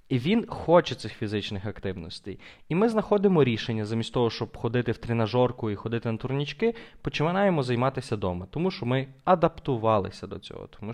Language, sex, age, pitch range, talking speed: Ukrainian, male, 20-39, 105-150 Hz, 165 wpm